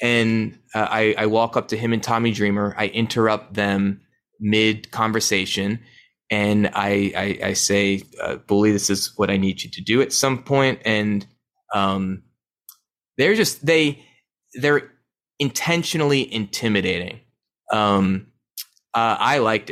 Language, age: English, 20-39